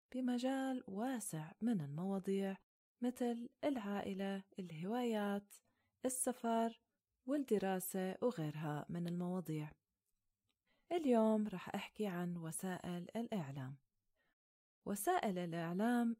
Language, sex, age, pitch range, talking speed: Arabic, female, 30-49, 175-235 Hz, 75 wpm